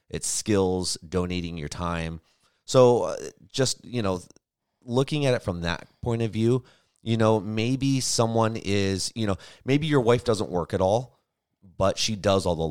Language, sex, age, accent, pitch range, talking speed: English, male, 30-49, American, 85-110 Hz, 170 wpm